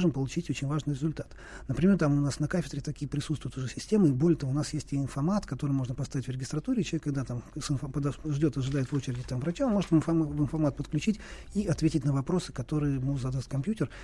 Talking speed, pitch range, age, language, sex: 220 wpm, 135-160 Hz, 40-59, Russian, male